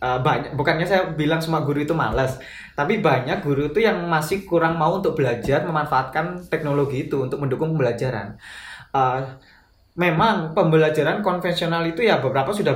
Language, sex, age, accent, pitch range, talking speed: Indonesian, male, 20-39, native, 135-170 Hz, 150 wpm